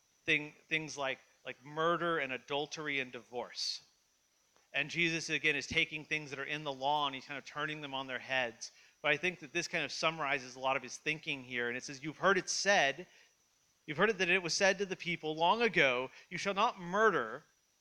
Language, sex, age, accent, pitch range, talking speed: English, male, 40-59, American, 145-185 Hz, 220 wpm